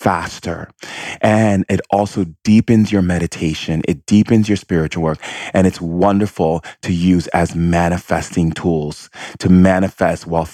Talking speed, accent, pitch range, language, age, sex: 130 wpm, American, 85-100 Hz, English, 30-49, male